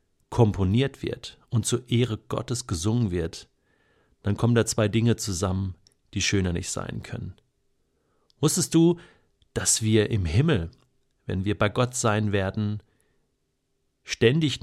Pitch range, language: 100-125 Hz, German